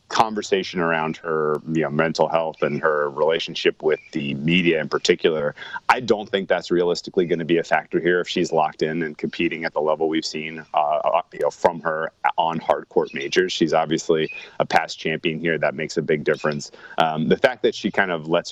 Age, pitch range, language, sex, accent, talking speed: 30-49, 80-100 Hz, English, male, American, 210 wpm